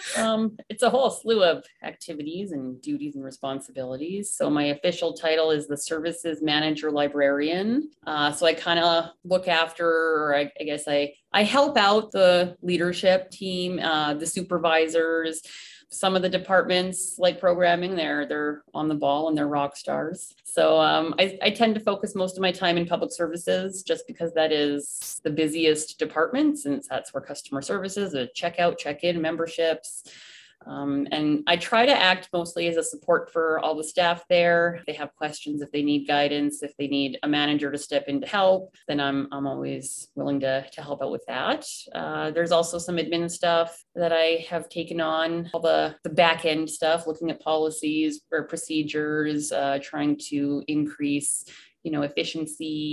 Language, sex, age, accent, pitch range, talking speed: English, female, 30-49, American, 145-180 Hz, 180 wpm